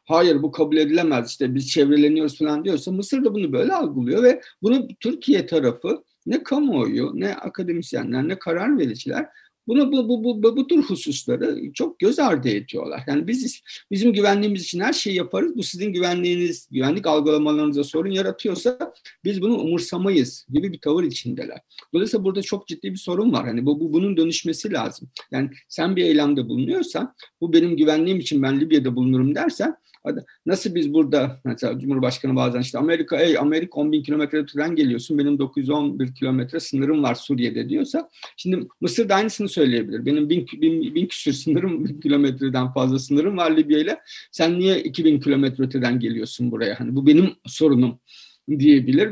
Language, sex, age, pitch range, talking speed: Turkish, male, 50-69, 145-200 Hz, 160 wpm